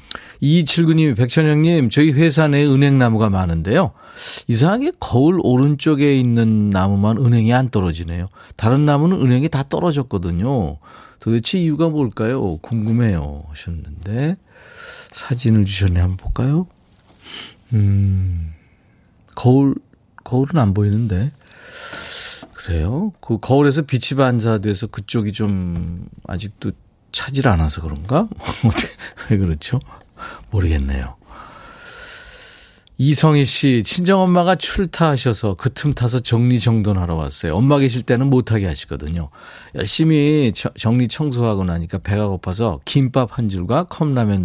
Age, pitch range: 40-59, 95-145 Hz